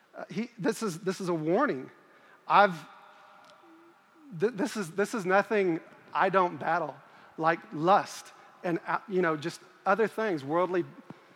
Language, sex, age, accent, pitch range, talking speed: English, male, 40-59, American, 170-200 Hz, 135 wpm